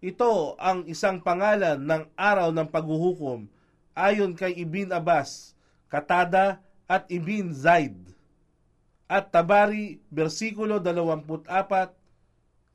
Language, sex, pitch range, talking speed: Filipino, male, 155-205 Hz, 95 wpm